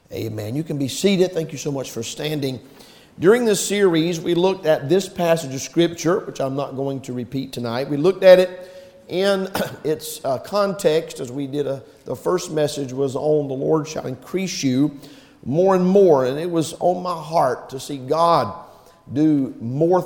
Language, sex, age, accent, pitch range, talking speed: English, male, 50-69, American, 120-160 Hz, 185 wpm